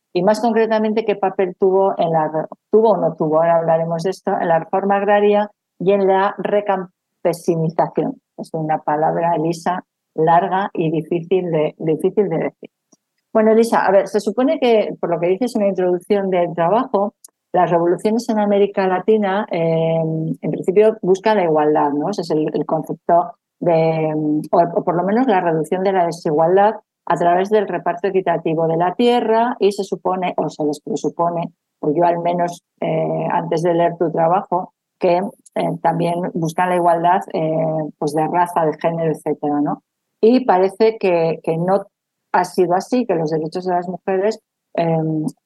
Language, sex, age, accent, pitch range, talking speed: English, female, 50-69, Spanish, 165-200 Hz, 180 wpm